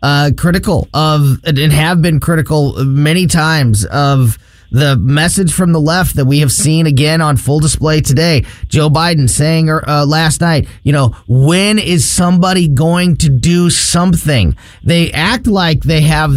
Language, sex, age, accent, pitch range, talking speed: English, male, 30-49, American, 140-180 Hz, 160 wpm